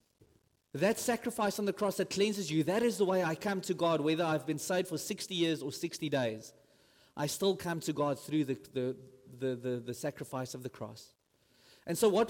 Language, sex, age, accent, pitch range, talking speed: English, male, 30-49, South African, 135-210 Hz, 215 wpm